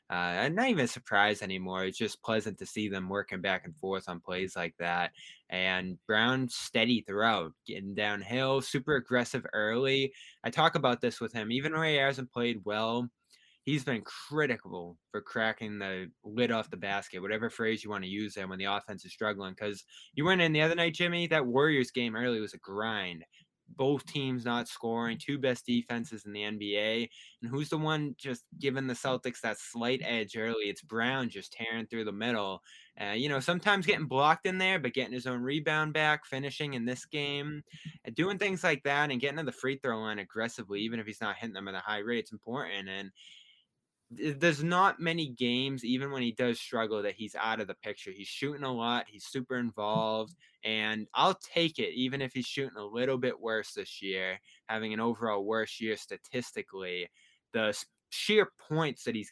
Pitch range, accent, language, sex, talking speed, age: 105-140 Hz, American, English, male, 200 wpm, 20-39